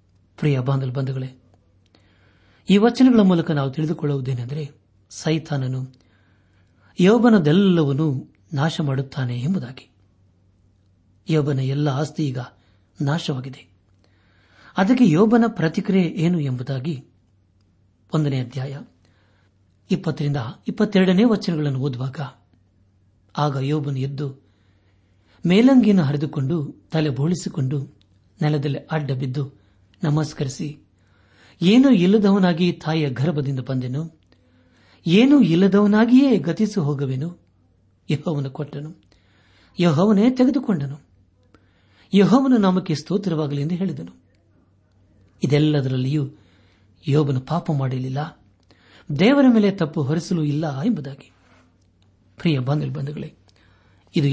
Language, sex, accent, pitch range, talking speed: Kannada, male, native, 100-160 Hz, 70 wpm